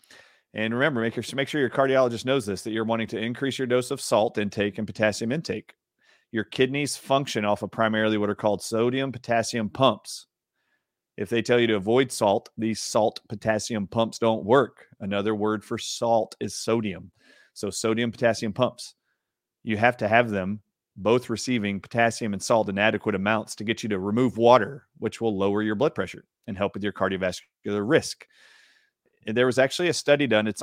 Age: 40-59